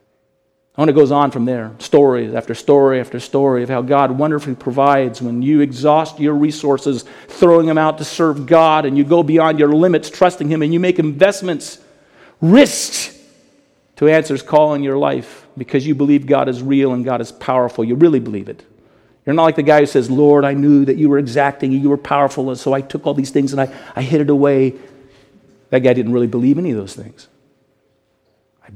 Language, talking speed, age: English, 210 wpm, 50-69